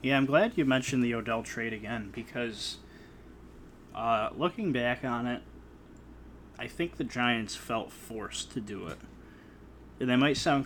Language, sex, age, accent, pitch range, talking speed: English, male, 20-39, American, 115-135 Hz, 160 wpm